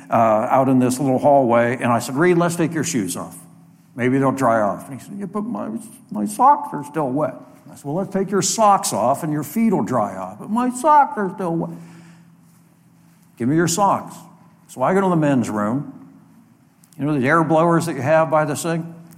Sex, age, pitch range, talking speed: male, 60-79, 135-180 Hz, 230 wpm